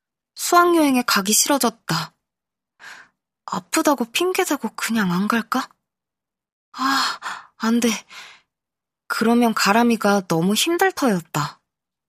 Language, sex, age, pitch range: Korean, female, 20-39, 185-250 Hz